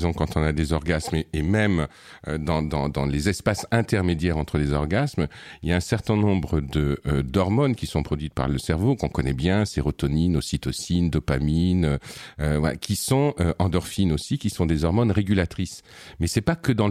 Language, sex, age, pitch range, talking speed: French, male, 50-69, 80-110 Hz, 195 wpm